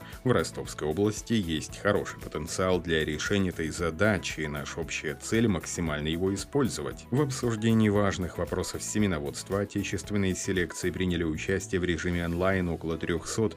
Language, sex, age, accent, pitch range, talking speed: Russian, male, 30-49, native, 80-100 Hz, 135 wpm